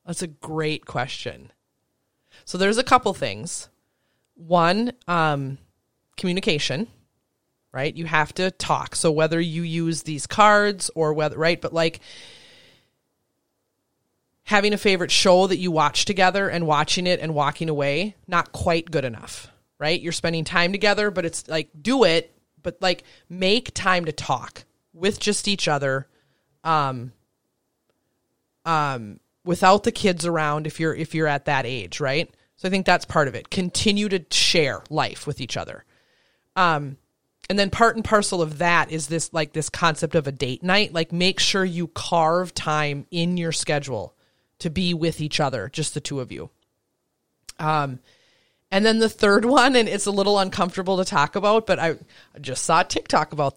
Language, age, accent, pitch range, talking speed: English, 30-49, American, 150-190 Hz, 170 wpm